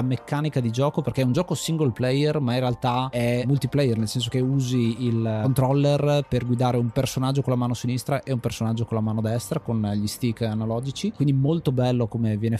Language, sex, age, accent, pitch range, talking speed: Italian, male, 20-39, native, 115-135 Hz, 210 wpm